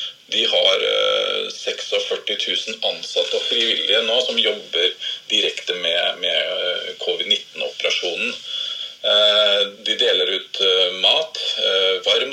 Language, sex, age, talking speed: English, male, 30-49, 90 wpm